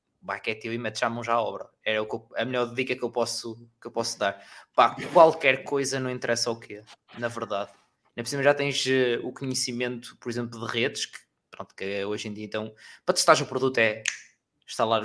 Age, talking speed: 20-39, 210 wpm